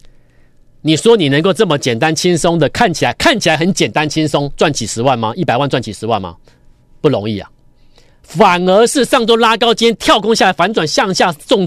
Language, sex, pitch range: Chinese, male, 130-190 Hz